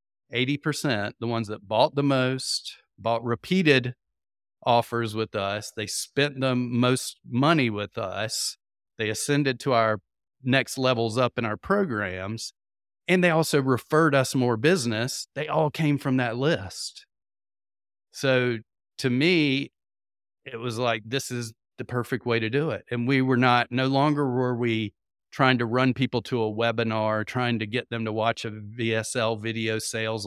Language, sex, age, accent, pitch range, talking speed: English, male, 40-59, American, 105-125 Hz, 160 wpm